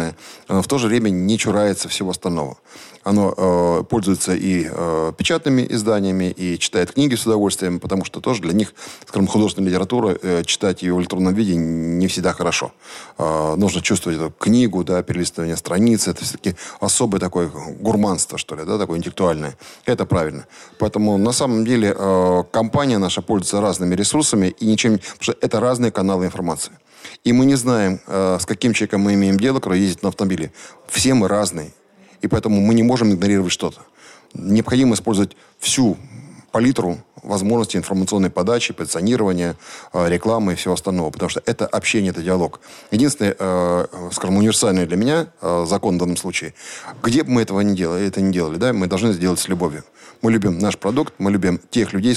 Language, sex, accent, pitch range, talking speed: Russian, male, native, 90-110 Hz, 165 wpm